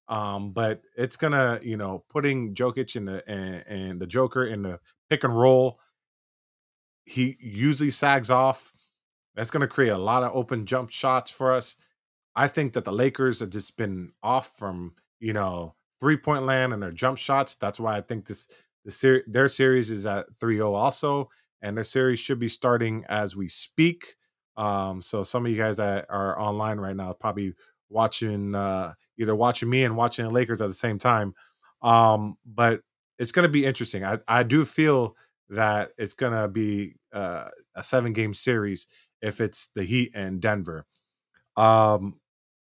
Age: 20-39